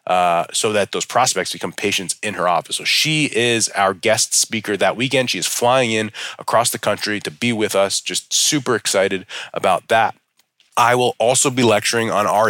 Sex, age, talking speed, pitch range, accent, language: male, 30-49, 195 wpm, 95-115 Hz, American, English